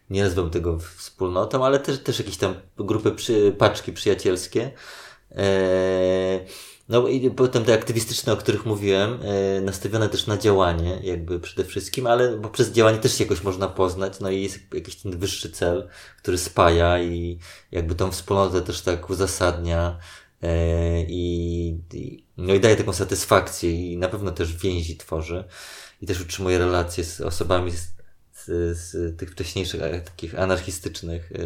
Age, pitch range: 20-39, 85-100 Hz